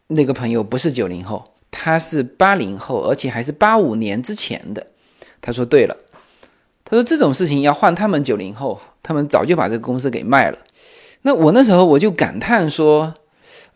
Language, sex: Chinese, male